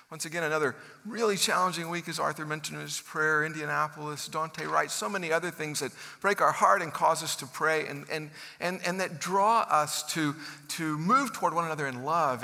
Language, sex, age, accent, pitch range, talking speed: English, male, 50-69, American, 130-170 Hz, 205 wpm